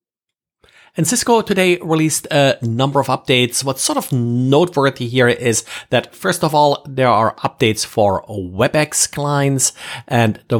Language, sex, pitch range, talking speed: English, male, 110-140 Hz, 145 wpm